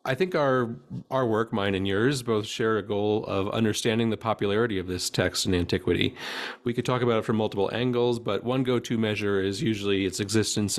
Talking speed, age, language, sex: 205 wpm, 40-59, English, male